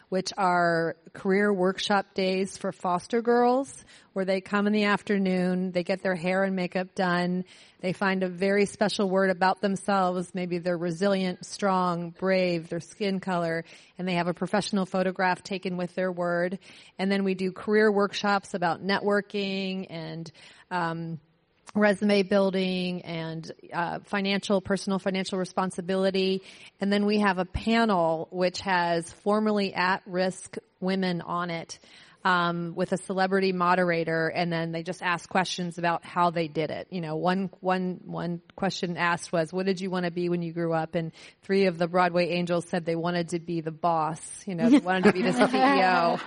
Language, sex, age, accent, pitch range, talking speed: English, female, 30-49, American, 175-195 Hz, 175 wpm